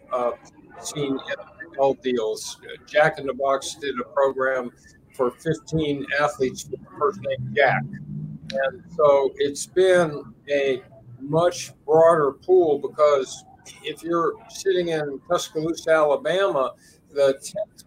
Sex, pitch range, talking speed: male, 135-175 Hz, 120 wpm